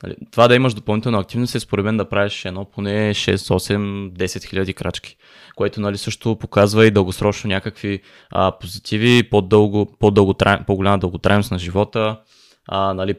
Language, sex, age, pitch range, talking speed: Bulgarian, male, 20-39, 95-110 Hz, 155 wpm